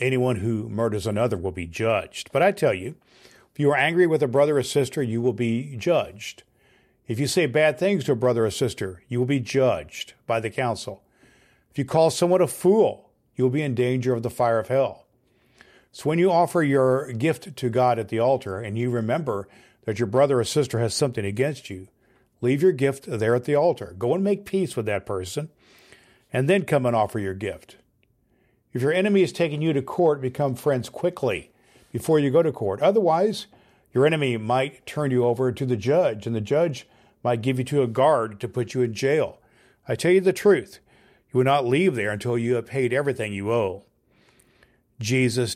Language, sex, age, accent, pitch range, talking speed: English, male, 50-69, American, 115-145 Hz, 210 wpm